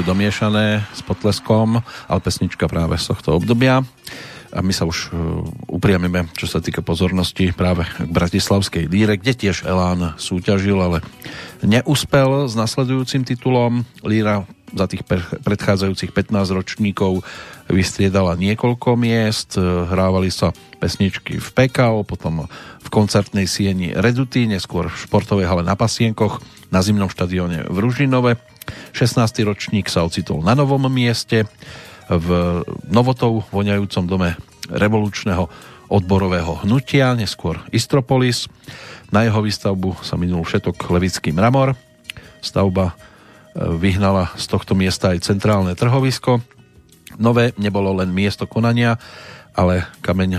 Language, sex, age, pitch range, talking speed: Slovak, male, 40-59, 90-115 Hz, 120 wpm